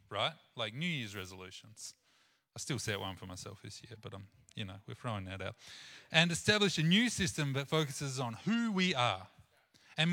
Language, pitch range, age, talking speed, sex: English, 110-160 Hz, 30-49, 195 wpm, male